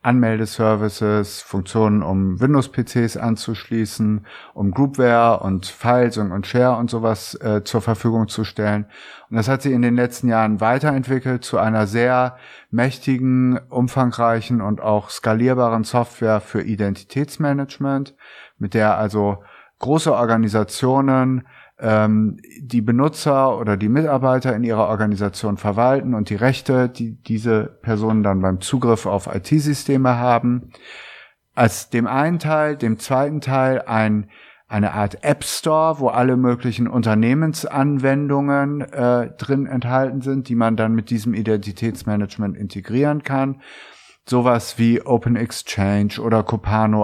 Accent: German